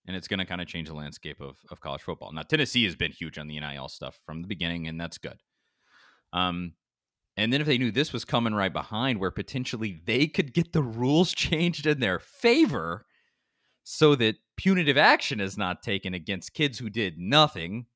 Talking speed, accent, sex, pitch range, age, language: 205 wpm, American, male, 105-155 Hz, 30-49, English